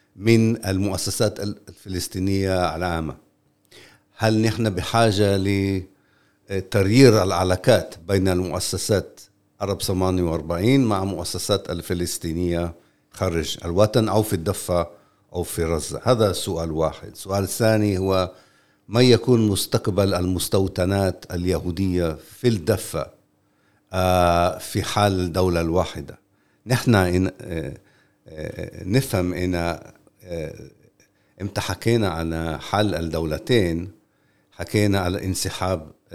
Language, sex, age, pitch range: Arabic, male, 60-79, 90-110 Hz